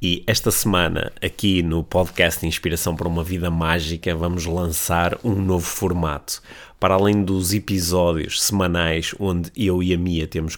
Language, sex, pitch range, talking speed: Portuguese, male, 85-100 Hz, 155 wpm